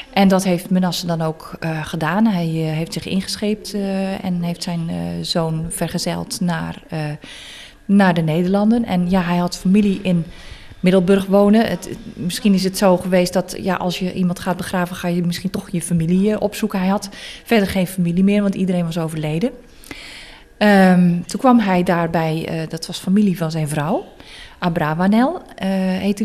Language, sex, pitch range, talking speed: Dutch, female, 170-200 Hz, 170 wpm